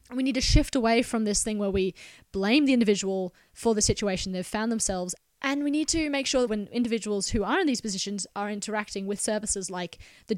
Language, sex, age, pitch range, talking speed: English, female, 20-39, 190-235 Hz, 225 wpm